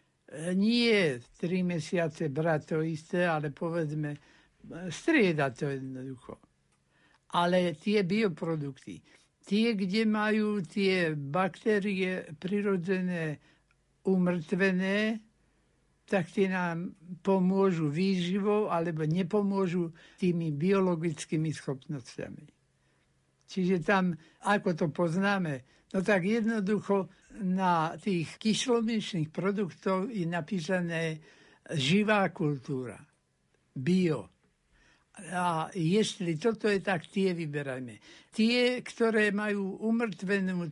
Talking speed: 85 wpm